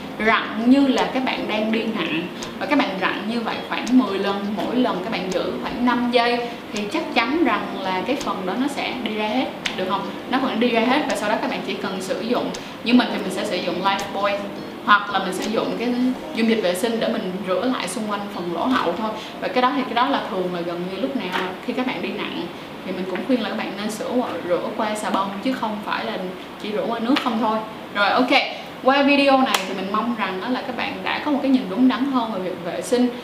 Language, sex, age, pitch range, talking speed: Vietnamese, female, 20-39, 195-255 Hz, 265 wpm